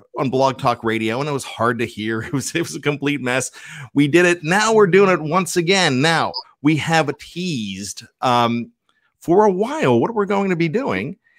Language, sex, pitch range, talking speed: English, male, 125-175 Hz, 210 wpm